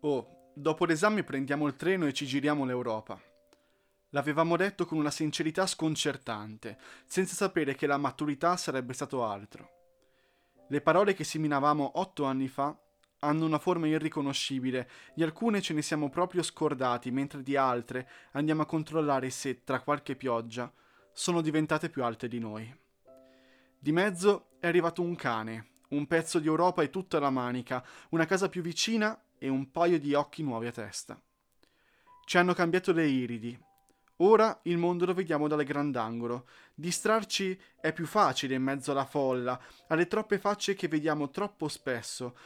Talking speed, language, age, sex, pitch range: 155 wpm, Italian, 20-39, male, 130-170 Hz